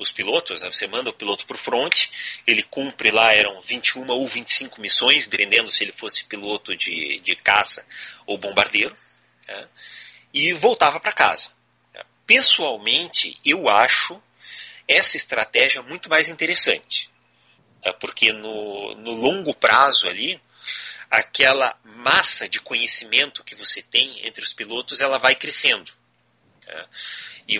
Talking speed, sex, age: 135 wpm, male, 30-49